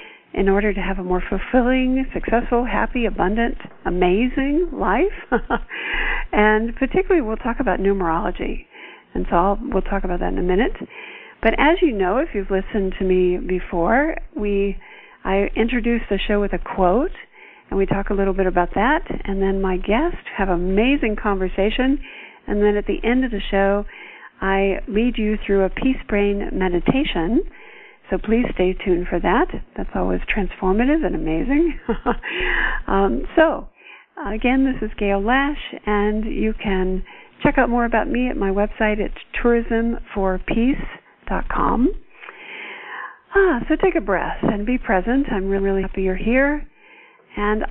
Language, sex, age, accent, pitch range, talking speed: English, female, 50-69, American, 195-270 Hz, 155 wpm